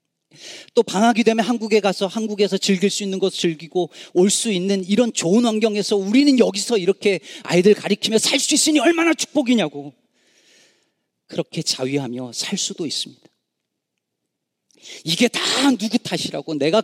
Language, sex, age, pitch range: Korean, male, 40-59, 150-235 Hz